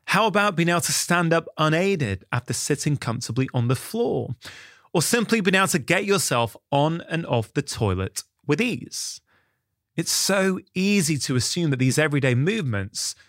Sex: male